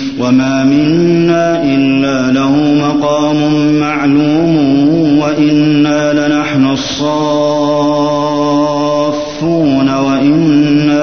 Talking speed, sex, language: 55 wpm, male, Arabic